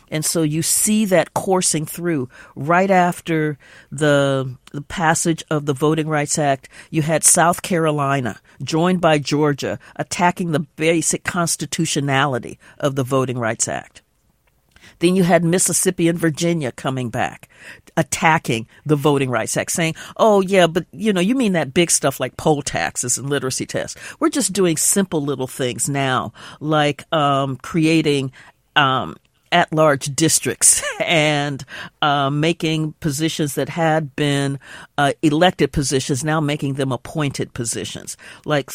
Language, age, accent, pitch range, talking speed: English, 50-69, American, 140-170 Hz, 140 wpm